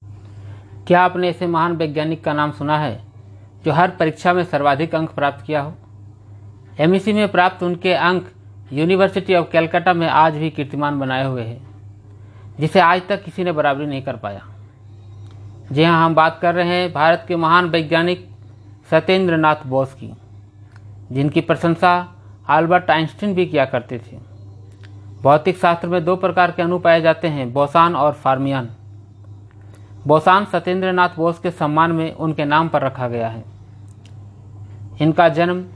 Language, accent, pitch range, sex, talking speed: Hindi, native, 105-170 Hz, male, 155 wpm